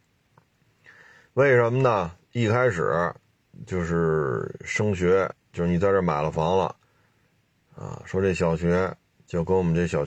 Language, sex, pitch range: Chinese, male, 85-105 Hz